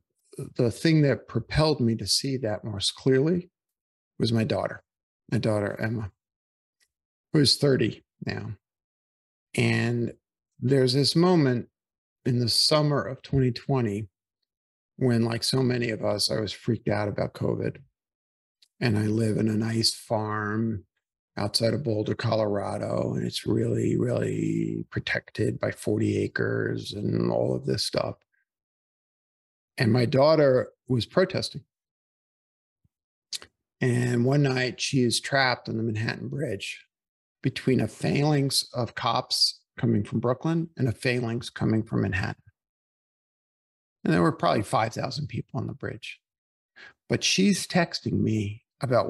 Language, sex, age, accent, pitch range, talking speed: English, male, 50-69, American, 105-130 Hz, 130 wpm